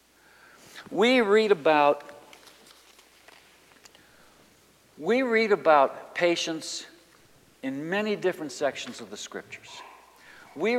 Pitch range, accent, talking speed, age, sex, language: 150-210 Hz, American, 85 wpm, 60-79, male, English